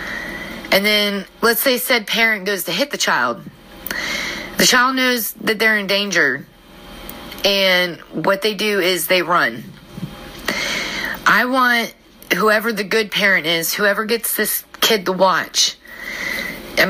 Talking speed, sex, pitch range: 140 wpm, female, 185-225 Hz